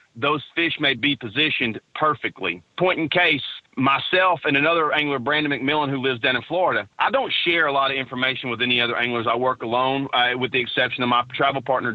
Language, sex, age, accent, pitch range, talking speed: English, male, 30-49, American, 125-150 Hz, 210 wpm